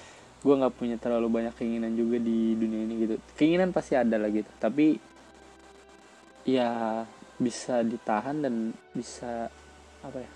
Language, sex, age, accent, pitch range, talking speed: Indonesian, male, 20-39, native, 115-130 Hz, 140 wpm